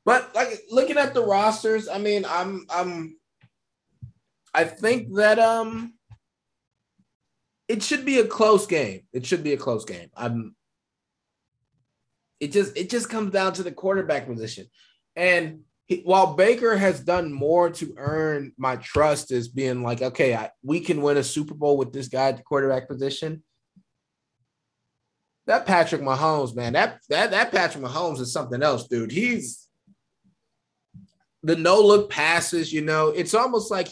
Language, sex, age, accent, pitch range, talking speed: English, male, 20-39, American, 145-195 Hz, 155 wpm